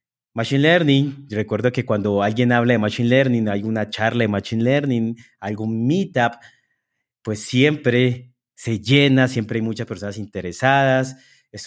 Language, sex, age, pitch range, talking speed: Spanish, male, 30-49, 110-135 Hz, 145 wpm